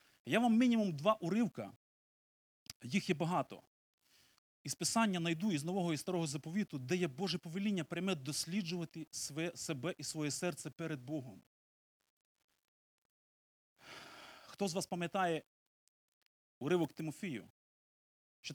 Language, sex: Ukrainian, male